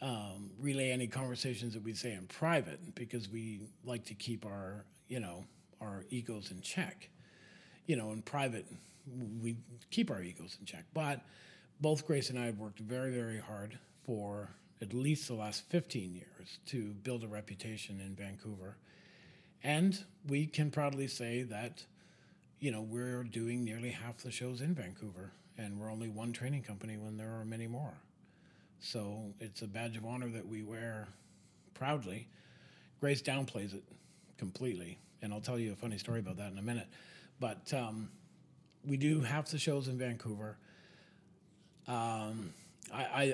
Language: English